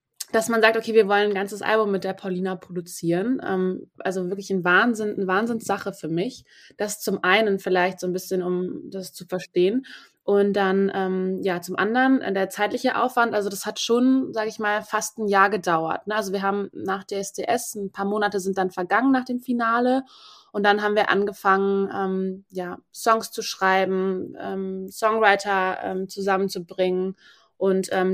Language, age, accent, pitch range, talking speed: German, 20-39, German, 190-225 Hz, 170 wpm